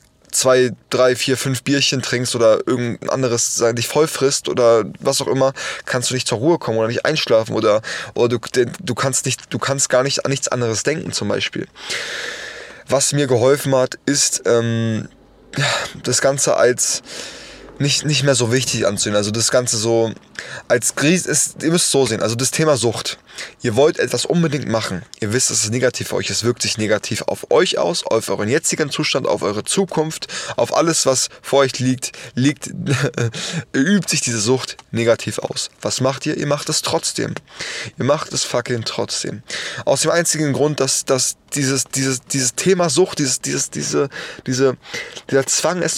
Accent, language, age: German, German, 20-39